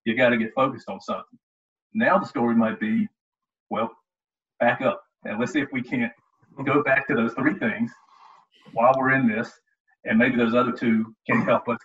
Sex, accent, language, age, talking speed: male, American, English, 40-59, 190 wpm